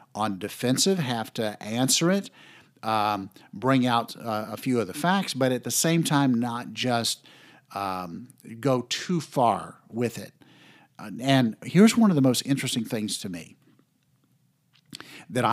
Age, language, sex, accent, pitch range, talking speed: 50-69, English, male, American, 100-125 Hz, 150 wpm